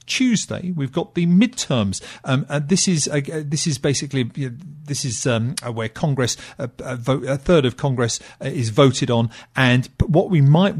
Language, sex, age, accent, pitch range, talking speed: English, male, 40-59, British, 125-155 Hz, 205 wpm